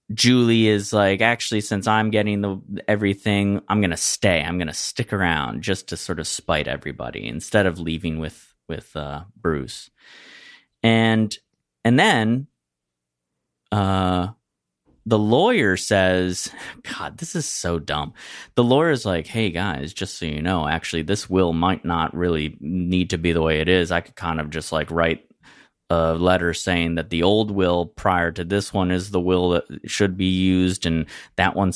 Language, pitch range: English, 80-100 Hz